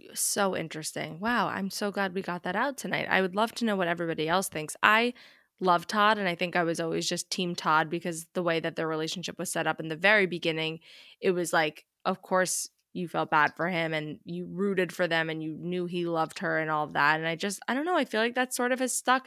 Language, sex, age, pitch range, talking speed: English, female, 20-39, 170-200 Hz, 260 wpm